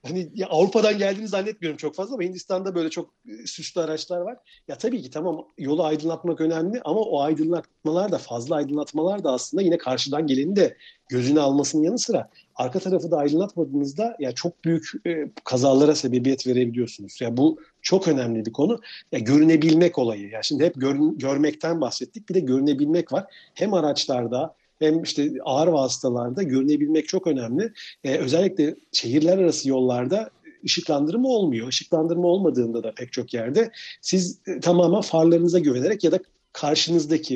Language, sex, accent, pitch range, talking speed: Turkish, male, native, 140-180 Hz, 155 wpm